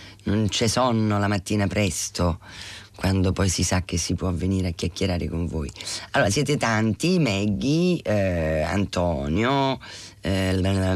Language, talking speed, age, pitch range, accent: Italian, 135 wpm, 30-49, 90-110 Hz, native